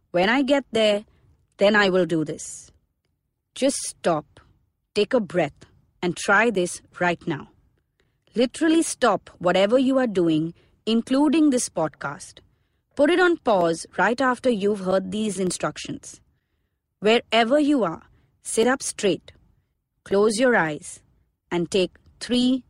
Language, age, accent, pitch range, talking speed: English, 30-49, Indian, 175-235 Hz, 130 wpm